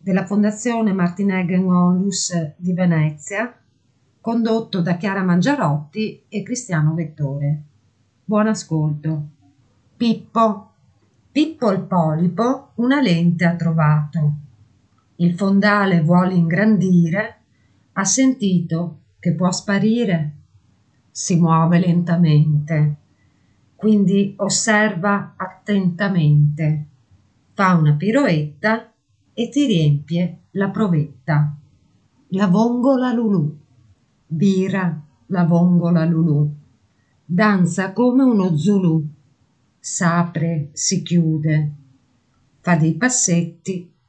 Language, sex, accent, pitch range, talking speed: Italian, female, native, 150-200 Hz, 85 wpm